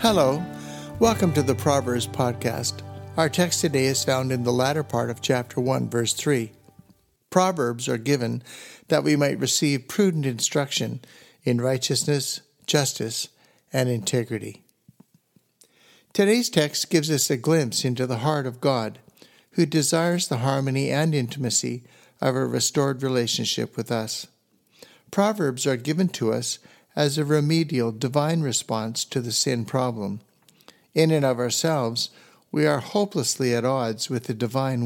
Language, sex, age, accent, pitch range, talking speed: English, male, 60-79, American, 120-150 Hz, 145 wpm